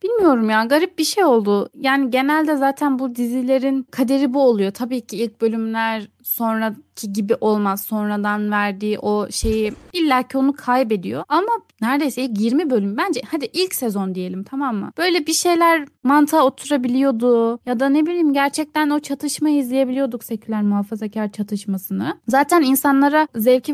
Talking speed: 150 wpm